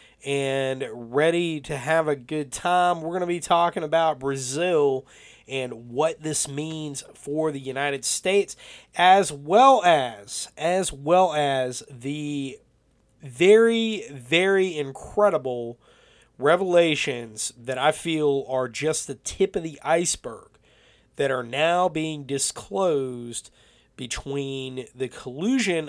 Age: 30-49